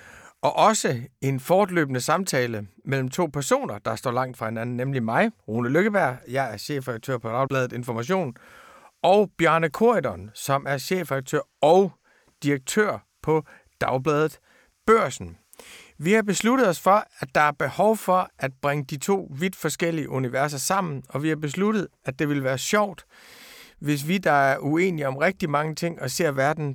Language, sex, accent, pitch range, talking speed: Danish, male, native, 135-185 Hz, 165 wpm